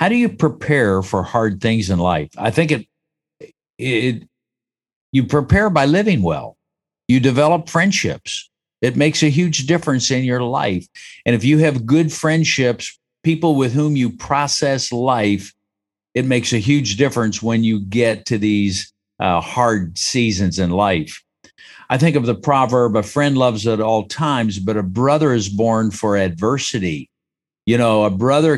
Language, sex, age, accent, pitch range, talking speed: English, male, 50-69, American, 105-145 Hz, 165 wpm